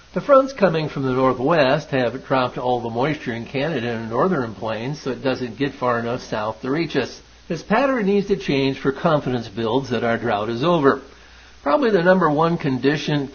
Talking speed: 200 wpm